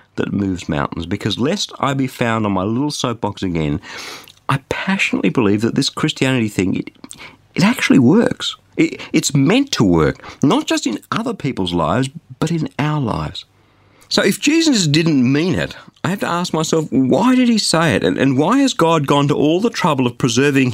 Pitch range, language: 105-170 Hz, English